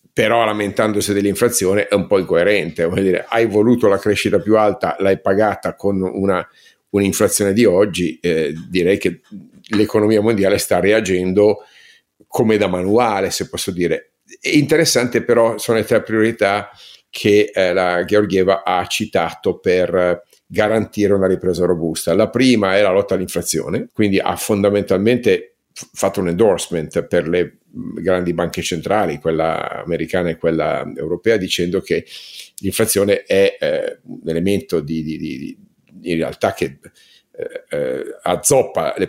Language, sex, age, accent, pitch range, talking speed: Italian, male, 50-69, native, 90-110 Hz, 135 wpm